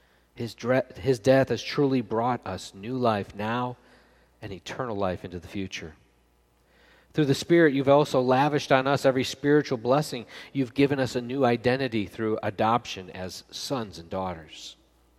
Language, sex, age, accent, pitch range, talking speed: English, male, 40-59, American, 95-125 Hz, 155 wpm